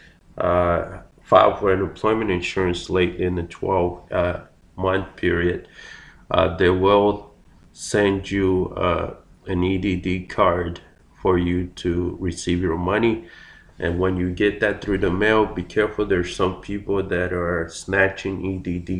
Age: 30-49